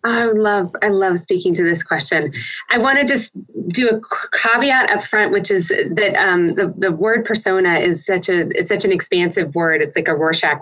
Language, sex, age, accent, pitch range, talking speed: English, female, 20-39, American, 165-215 Hz, 215 wpm